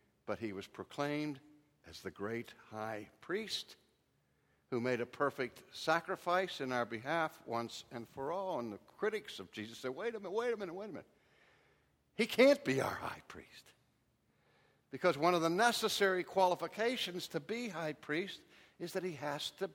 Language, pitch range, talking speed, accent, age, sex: English, 120-170 Hz, 175 wpm, American, 60-79, male